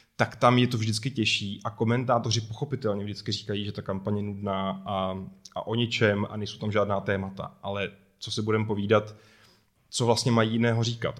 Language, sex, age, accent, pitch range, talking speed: Czech, male, 20-39, native, 100-115 Hz, 190 wpm